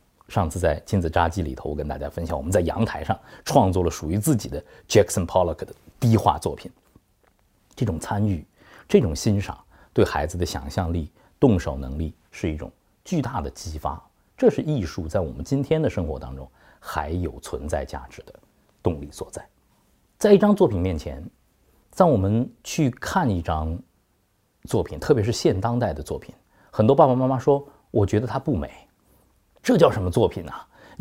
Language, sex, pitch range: Chinese, male, 80-135 Hz